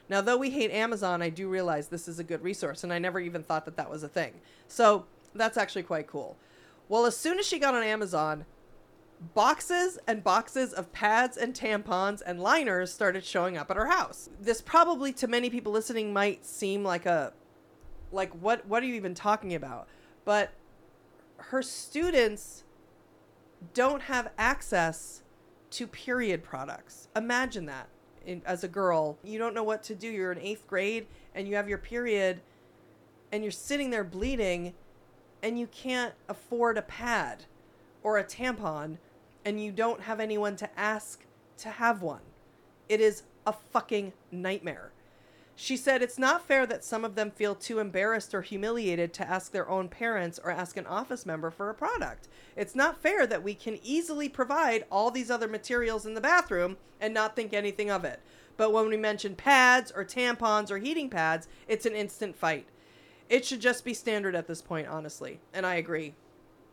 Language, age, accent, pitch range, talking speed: English, 30-49, American, 180-235 Hz, 180 wpm